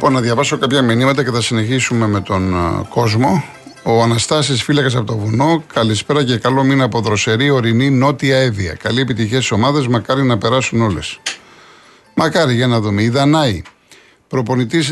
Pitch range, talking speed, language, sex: 115-135 Hz, 165 wpm, Greek, male